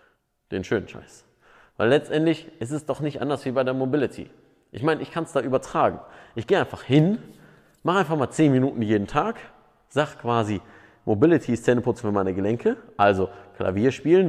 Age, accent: 30-49, German